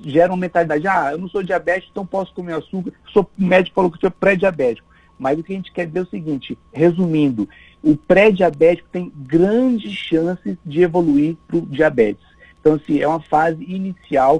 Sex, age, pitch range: male, 50-69, 145-180 Hz